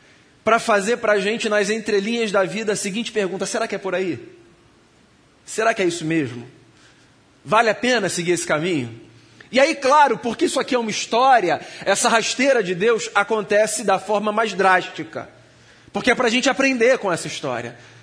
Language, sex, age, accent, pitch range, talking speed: Portuguese, male, 30-49, Brazilian, 175-245 Hz, 185 wpm